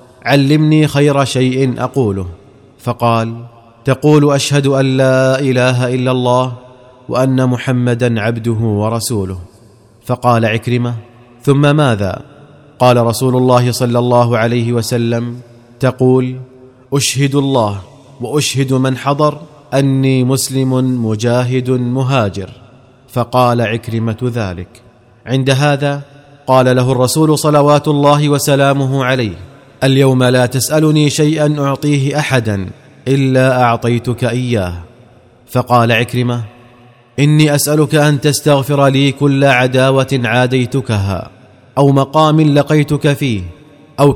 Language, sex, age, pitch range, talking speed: Arabic, male, 30-49, 120-140 Hz, 100 wpm